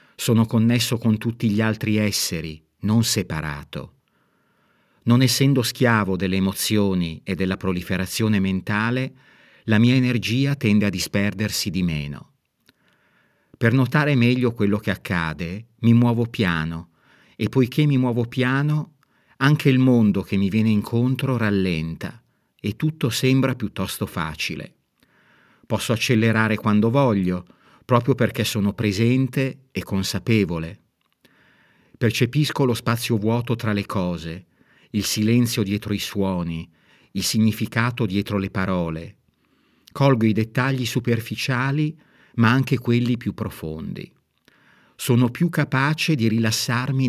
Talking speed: 120 wpm